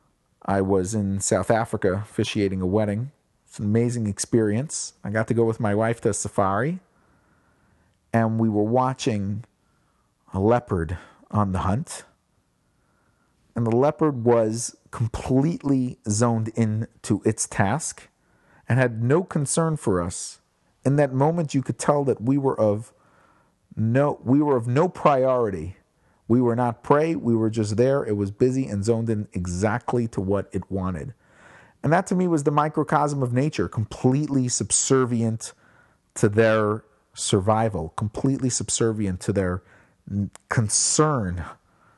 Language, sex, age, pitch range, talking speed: English, male, 40-59, 100-130 Hz, 145 wpm